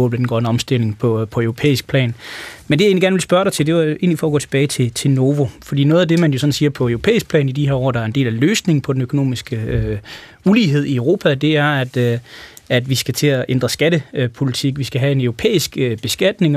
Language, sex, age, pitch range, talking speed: Danish, male, 20-39, 125-150 Hz, 260 wpm